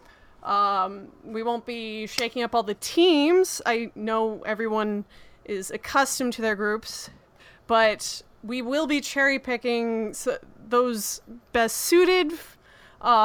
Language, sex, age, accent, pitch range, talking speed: English, female, 20-39, American, 210-255 Hz, 120 wpm